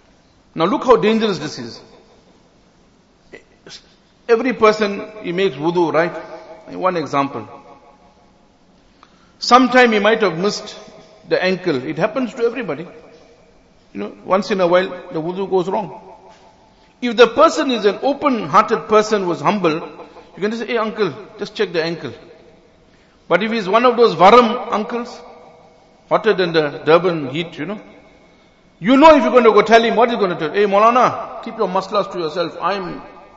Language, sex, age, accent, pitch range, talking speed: English, male, 50-69, Indian, 165-225 Hz, 170 wpm